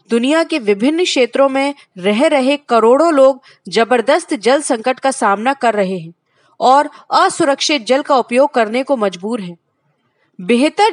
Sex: female